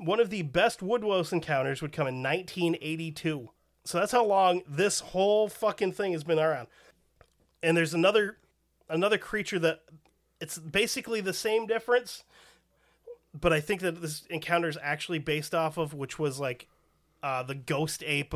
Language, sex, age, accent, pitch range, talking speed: English, male, 30-49, American, 140-180 Hz, 170 wpm